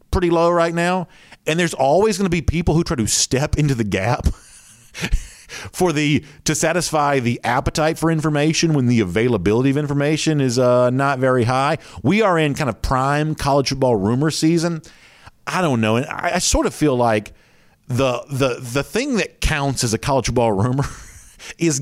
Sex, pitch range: male, 120-160 Hz